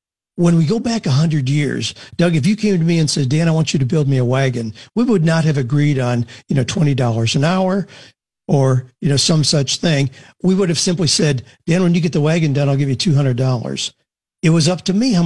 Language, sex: English, male